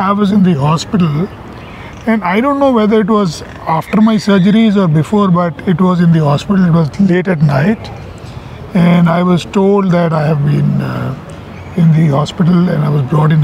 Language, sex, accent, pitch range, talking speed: Hindi, male, native, 150-190 Hz, 200 wpm